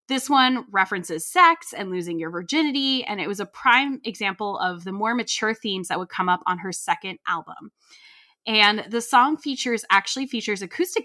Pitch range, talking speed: 195-265 Hz, 185 wpm